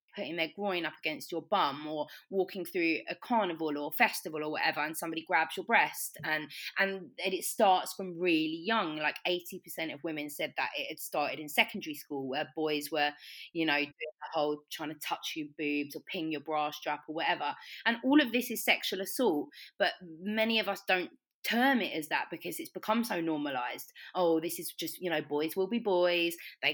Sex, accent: female, British